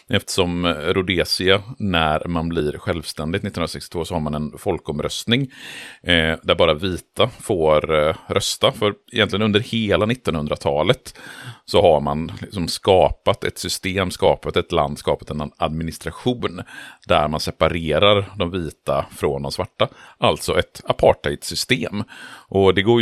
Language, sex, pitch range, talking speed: Swedish, male, 75-95 Hz, 135 wpm